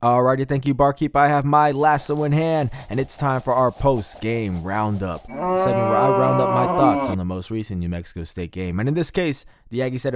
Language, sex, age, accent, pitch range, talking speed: English, male, 20-39, American, 105-130 Hz, 230 wpm